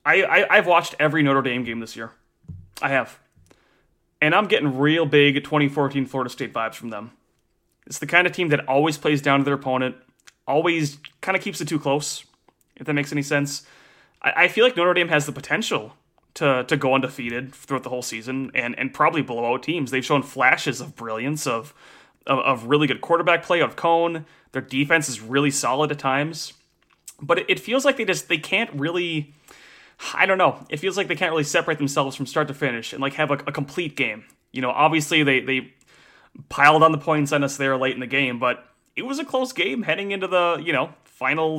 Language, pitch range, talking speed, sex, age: English, 130-165 Hz, 220 wpm, male, 30-49